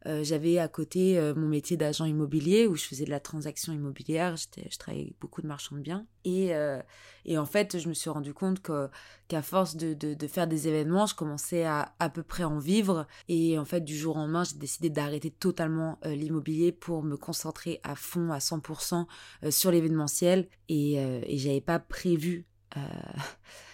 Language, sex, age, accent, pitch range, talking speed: French, female, 20-39, French, 150-180 Hz, 205 wpm